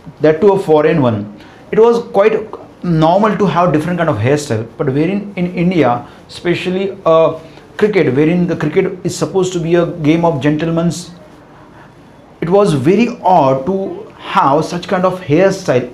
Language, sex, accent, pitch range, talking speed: Hindi, male, native, 140-175 Hz, 175 wpm